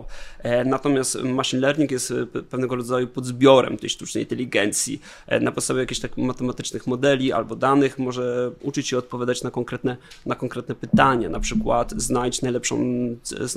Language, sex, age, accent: Polish, male, 20-39, native